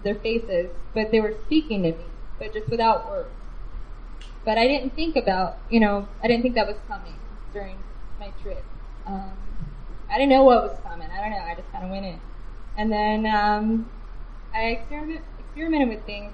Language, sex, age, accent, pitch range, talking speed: English, female, 10-29, American, 200-240 Hz, 185 wpm